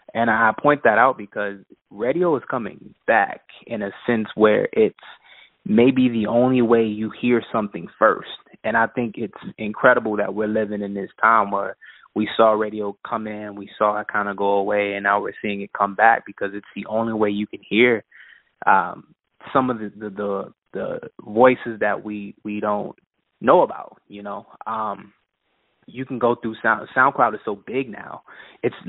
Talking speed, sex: 190 wpm, male